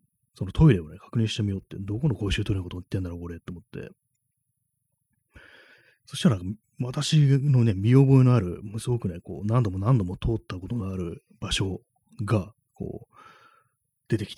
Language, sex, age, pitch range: Japanese, male, 30-49, 95-135 Hz